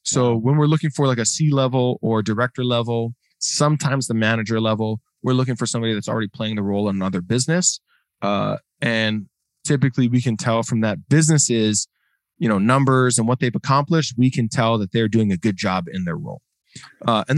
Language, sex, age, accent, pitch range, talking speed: English, male, 20-39, American, 110-135 Hz, 200 wpm